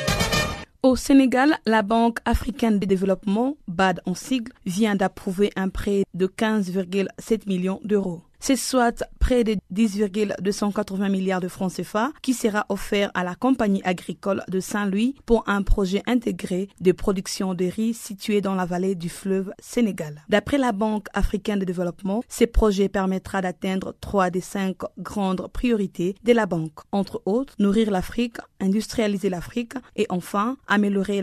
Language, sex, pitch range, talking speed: French, female, 185-225 Hz, 150 wpm